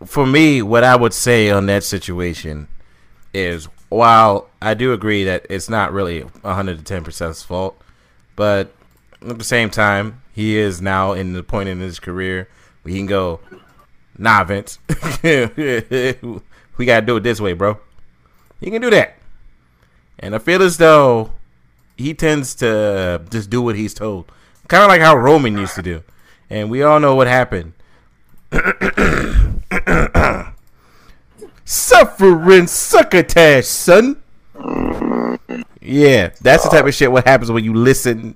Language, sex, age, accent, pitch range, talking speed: English, male, 30-49, American, 90-140 Hz, 145 wpm